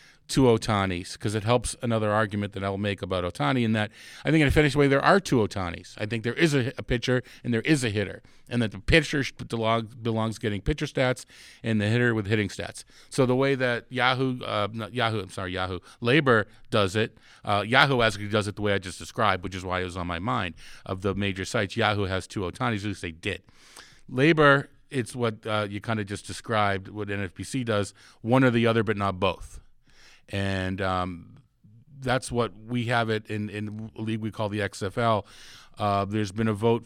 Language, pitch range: English, 100-120 Hz